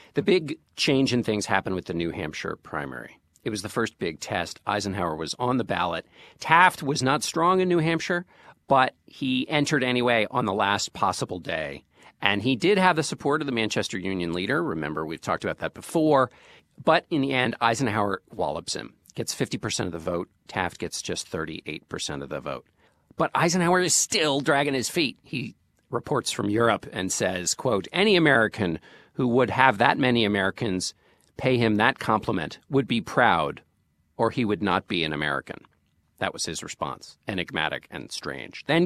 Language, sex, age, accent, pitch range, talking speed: English, male, 50-69, American, 95-135 Hz, 185 wpm